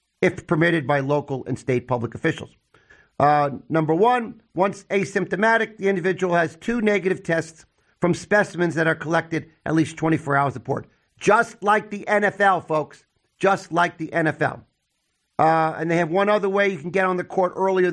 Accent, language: American, English